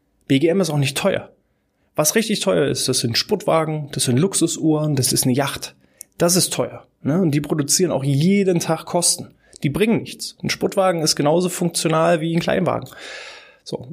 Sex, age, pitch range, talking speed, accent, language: male, 20-39, 140-185 Hz, 180 wpm, German, German